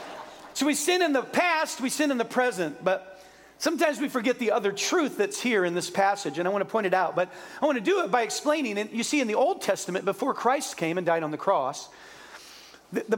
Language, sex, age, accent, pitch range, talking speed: English, male, 40-59, American, 195-265 Hz, 245 wpm